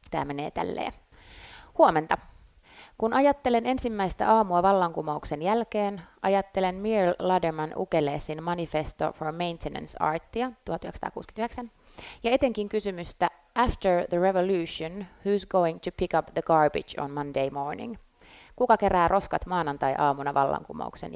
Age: 30-49